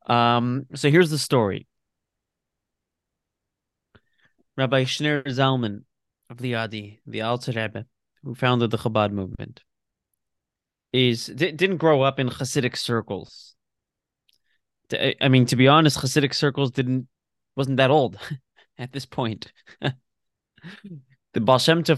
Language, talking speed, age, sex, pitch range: English, 115 wpm, 20-39, male, 120-150 Hz